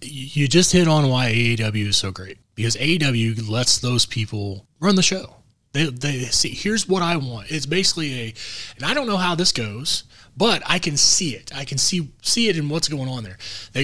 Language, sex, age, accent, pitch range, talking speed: English, male, 20-39, American, 115-155 Hz, 215 wpm